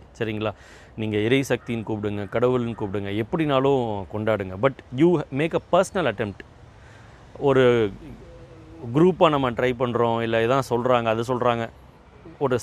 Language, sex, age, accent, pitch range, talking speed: Tamil, male, 30-49, native, 110-135 Hz, 120 wpm